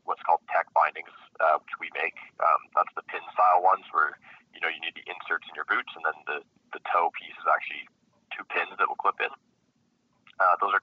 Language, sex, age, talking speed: English, male, 20-39, 225 wpm